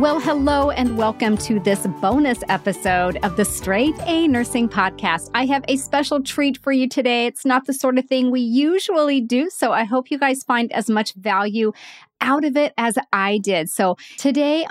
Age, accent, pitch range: 40-59, American, 220-290 Hz